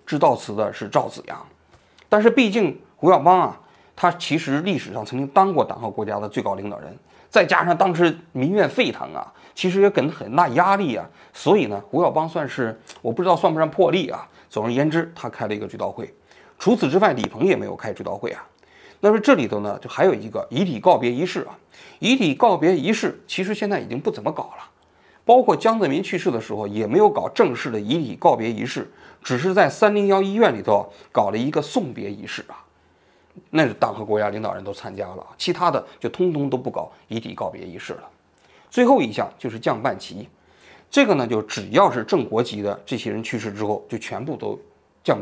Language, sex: Chinese, male